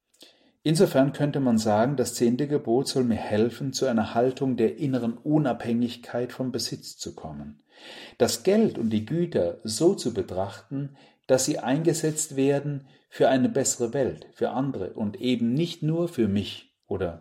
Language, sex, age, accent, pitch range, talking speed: German, male, 40-59, German, 105-140 Hz, 155 wpm